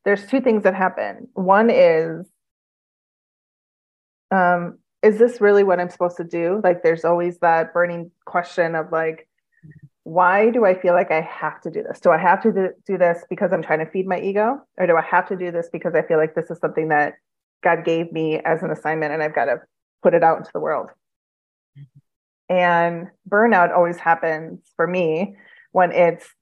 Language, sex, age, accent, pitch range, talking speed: English, female, 30-49, American, 160-185 Hz, 200 wpm